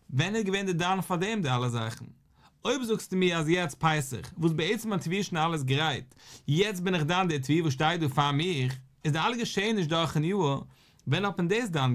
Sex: male